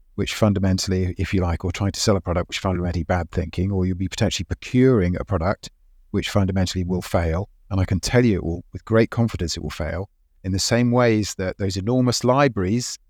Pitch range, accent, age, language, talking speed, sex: 90-110 Hz, British, 40-59, English, 215 wpm, male